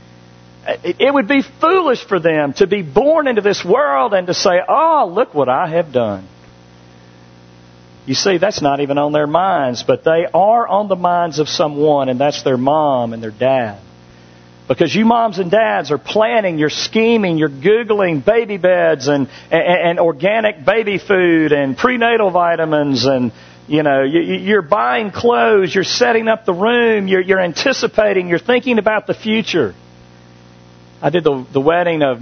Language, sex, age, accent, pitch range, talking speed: English, male, 50-69, American, 130-210 Hz, 170 wpm